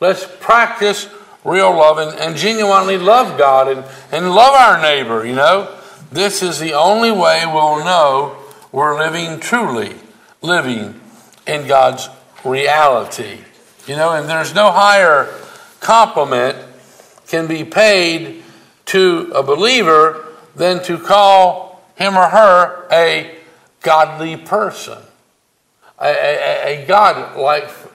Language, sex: English, male